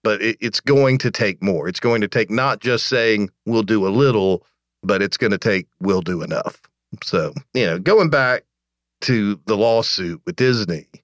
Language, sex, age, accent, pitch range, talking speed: English, male, 50-69, American, 100-150 Hz, 190 wpm